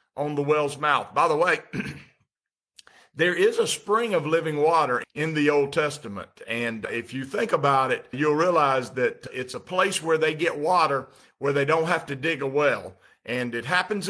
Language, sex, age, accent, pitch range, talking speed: English, male, 50-69, American, 130-165 Hz, 190 wpm